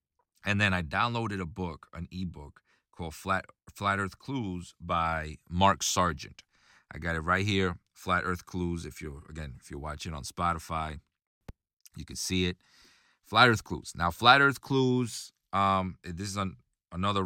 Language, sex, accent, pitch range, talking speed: English, male, American, 80-100 Hz, 165 wpm